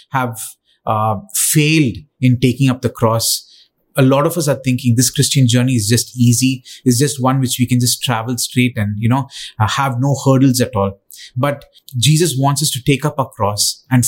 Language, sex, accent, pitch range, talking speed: English, male, Indian, 120-145 Hz, 205 wpm